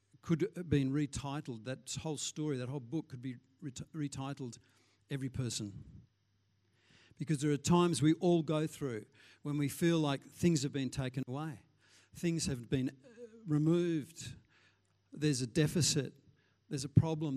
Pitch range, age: 110-150 Hz, 50-69